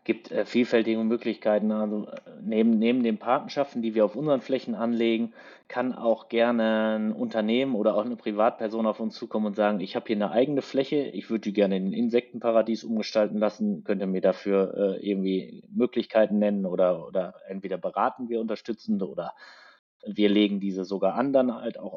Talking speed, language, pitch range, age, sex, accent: 180 wpm, German, 100-120 Hz, 30-49, male, German